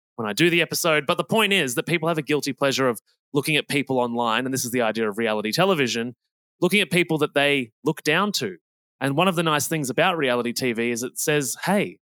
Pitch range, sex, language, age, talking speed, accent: 125-170 Hz, male, English, 20-39, 240 wpm, Australian